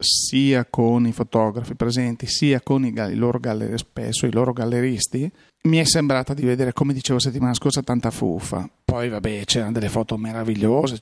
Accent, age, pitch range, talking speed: native, 40-59, 120-140 Hz, 175 wpm